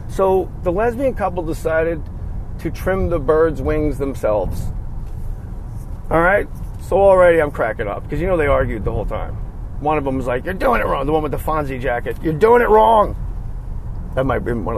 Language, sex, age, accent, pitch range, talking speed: English, male, 40-59, American, 130-195 Hz, 200 wpm